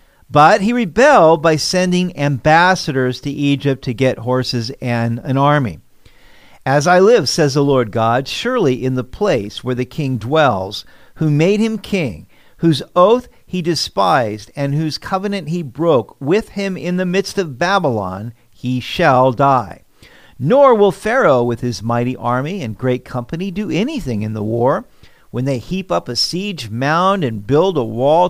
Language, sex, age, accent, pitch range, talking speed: English, male, 50-69, American, 125-175 Hz, 165 wpm